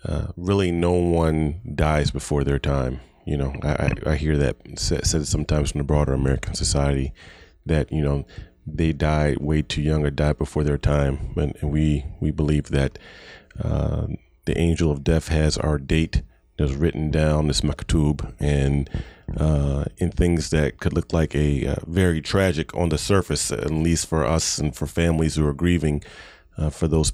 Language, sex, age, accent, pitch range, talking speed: English, male, 30-49, American, 75-85 Hz, 180 wpm